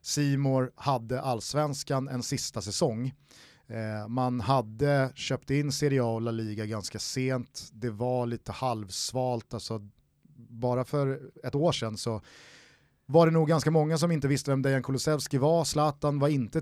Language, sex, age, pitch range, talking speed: Swedish, male, 30-49, 115-145 Hz, 155 wpm